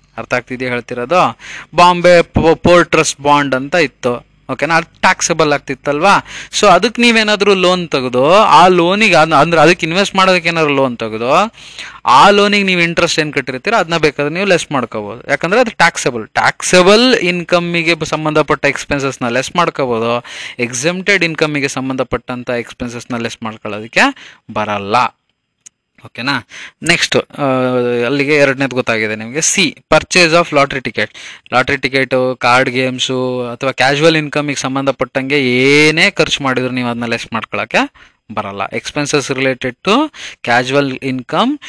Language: Kannada